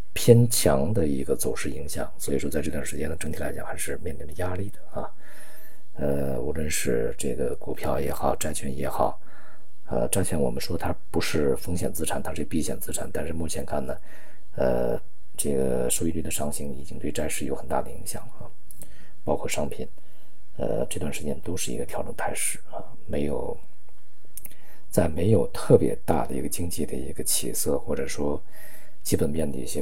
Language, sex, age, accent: Chinese, male, 50-69, native